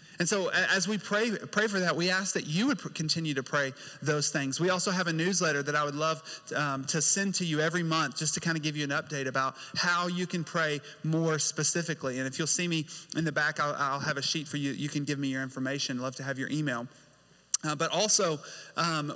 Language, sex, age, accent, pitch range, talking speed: English, male, 30-49, American, 155-200 Hz, 255 wpm